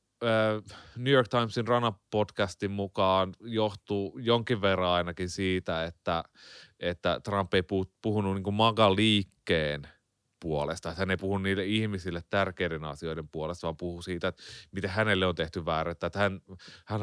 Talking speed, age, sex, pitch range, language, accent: 145 wpm, 30-49, male, 85-110 Hz, Finnish, native